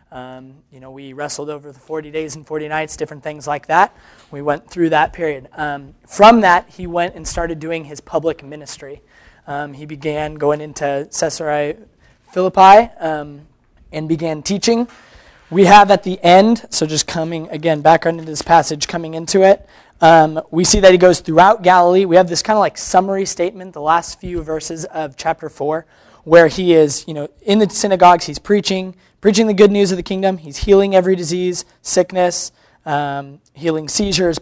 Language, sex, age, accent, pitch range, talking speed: English, male, 20-39, American, 150-185 Hz, 185 wpm